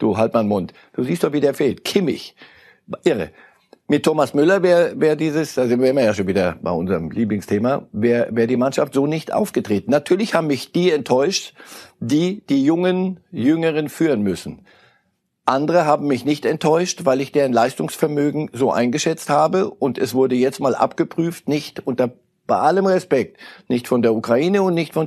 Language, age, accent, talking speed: German, 60-79, German, 185 wpm